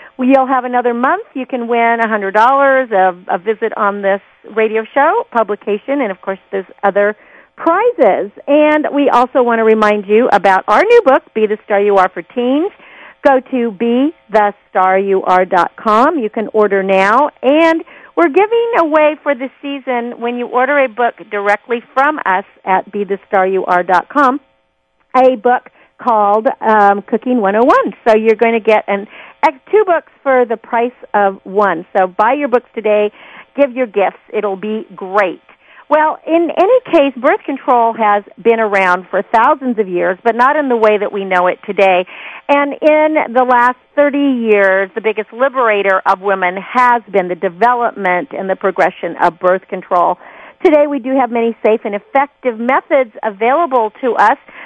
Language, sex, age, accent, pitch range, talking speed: English, female, 50-69, American, 200-270 Hz, 165 wpm